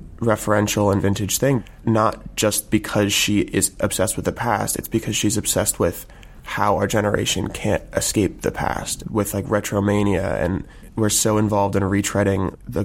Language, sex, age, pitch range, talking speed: English, male, 20-39, 100-110 Hz, 165 wpm